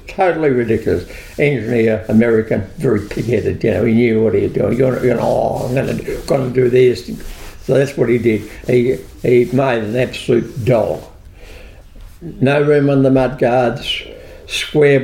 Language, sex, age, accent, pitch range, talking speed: English, male, 60-79, American, 95-125 Hz, 160 wpm